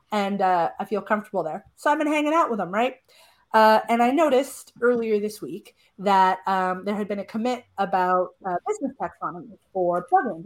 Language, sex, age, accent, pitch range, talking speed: English, female, 30-49, American, 190-245 Hz, 195 wpm